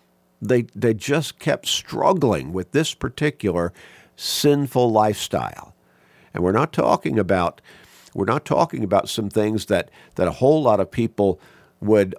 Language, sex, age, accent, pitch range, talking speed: English, male, 50-69, American, 75-120 Hz, 145 wpm